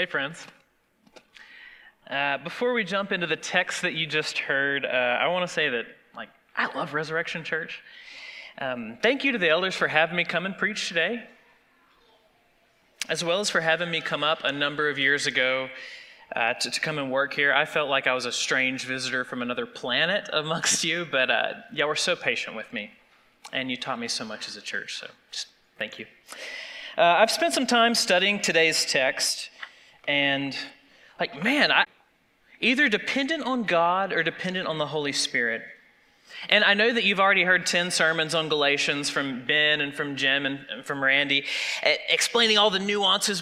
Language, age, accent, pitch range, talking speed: English, 30-49, American, 150-195 Hz, 180 wpm